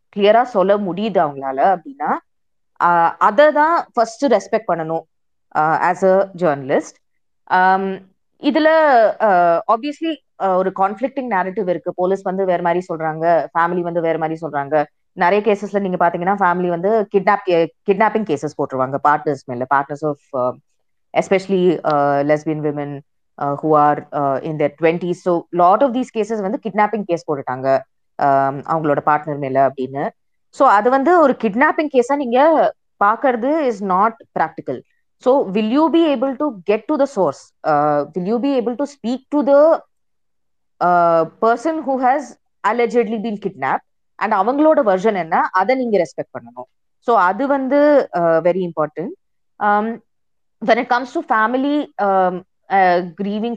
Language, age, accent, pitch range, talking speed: Tamil, 20-39, native, 160-245 Hz, 90 wpm